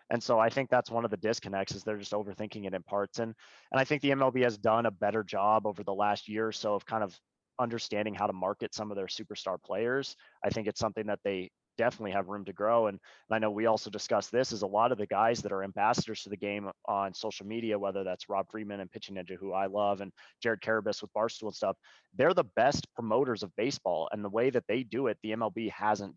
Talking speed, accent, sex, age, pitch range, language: 255 wpm, American, male, 20-39, 100-115 Hz, English